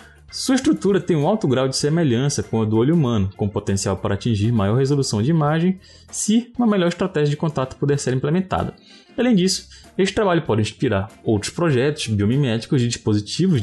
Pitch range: 105-150 Hz